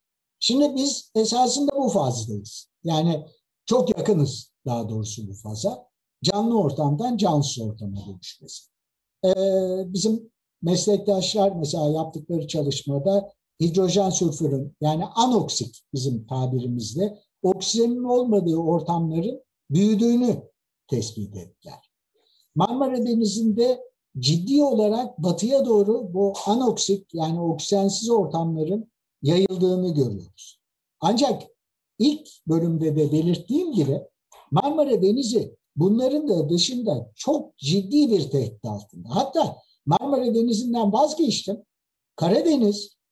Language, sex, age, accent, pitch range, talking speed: Turkish, male, 60-79, native, 150-240 Hz, 95 wpm